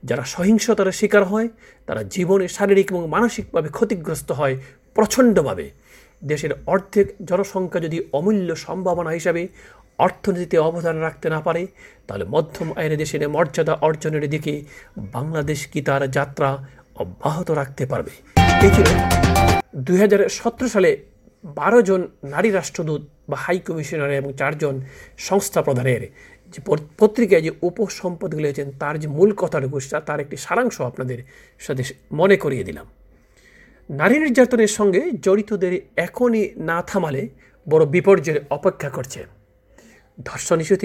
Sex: male